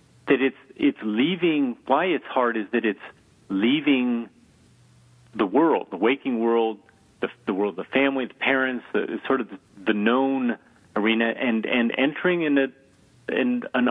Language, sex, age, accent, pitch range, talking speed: English, male, 40-59, American, 105-130 Hz, 160 wpm